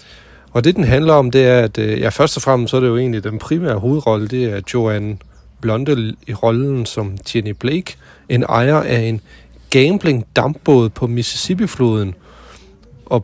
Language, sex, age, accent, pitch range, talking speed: Danish, male, 40-59, native, 110-135 Hz, 170 wpm